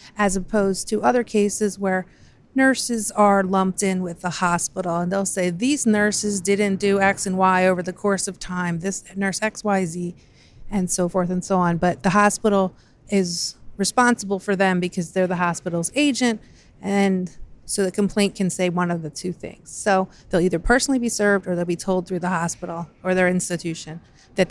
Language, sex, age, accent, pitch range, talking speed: English, female, 30-49, American, 180-210 Hz, 195 wpm